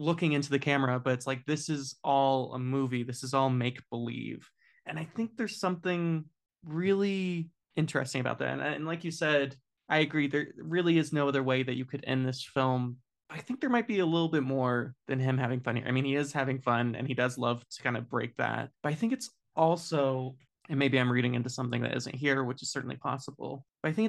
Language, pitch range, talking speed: English, 130-150 Hz, 235 wpm